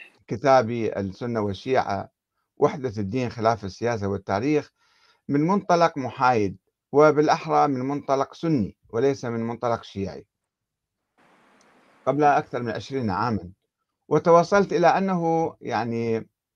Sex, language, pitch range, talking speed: male, Arabic, 115-155 Hz, 100 wpm